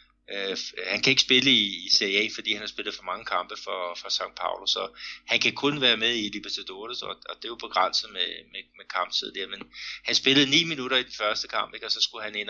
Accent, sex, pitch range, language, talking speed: native, male, 95-120 Hz, Danish, 255 wpm